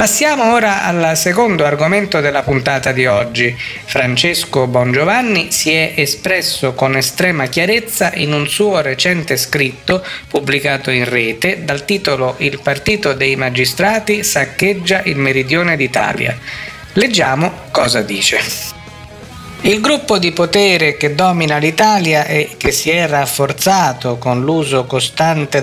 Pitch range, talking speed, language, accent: 140-200 Hz, 125 wpm, Italian, native